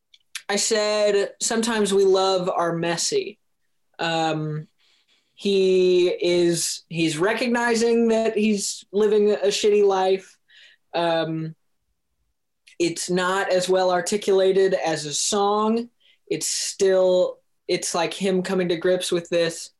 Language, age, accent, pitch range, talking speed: English, 20-39, American, 170-205 Hz, 110 wpm